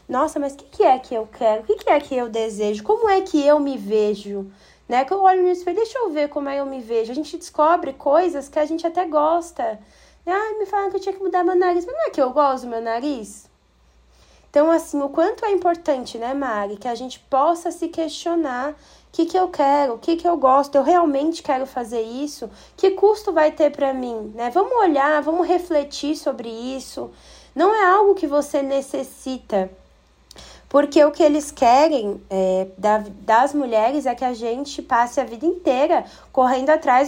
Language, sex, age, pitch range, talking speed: Portuguese, female, 20-39, 240-325 Hz, 205 wpm